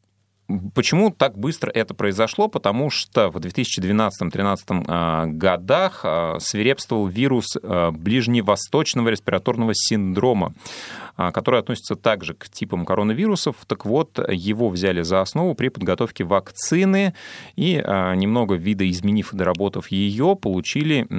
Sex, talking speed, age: male, 105 wpm, 30-49